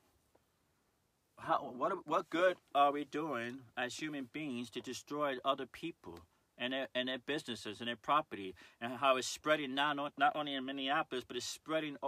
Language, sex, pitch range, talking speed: English, male, 120-155 Hz, 165 wpm